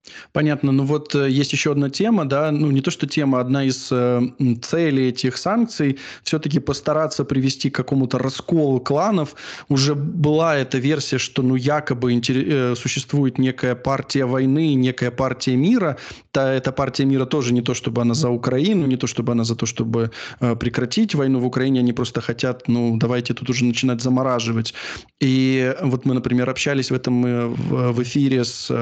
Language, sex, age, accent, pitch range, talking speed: Russian, male, 20-39, native, 125-145 Hz, 170 wpm